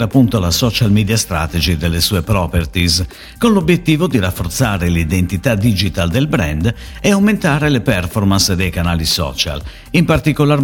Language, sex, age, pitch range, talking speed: Italian, male, 50-69, 90-145 Hz, 140 wpm